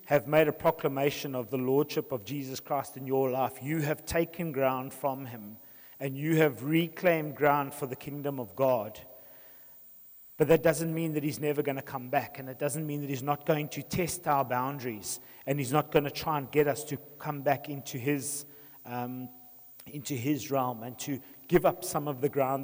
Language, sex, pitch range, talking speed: English, male, 130-155 Hz, 205 wpm